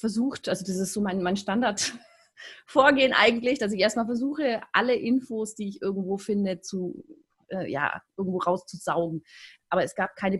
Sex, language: female, German